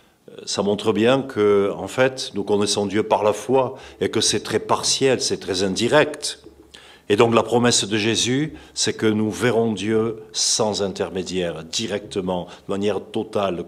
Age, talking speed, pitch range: 50-69, 160 wpm, 105-125 Hz